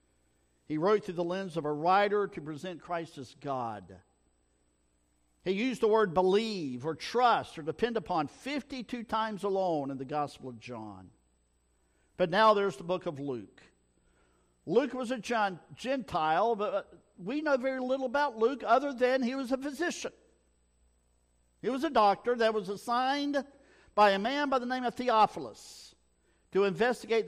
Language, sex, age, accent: English, male, 50-69, American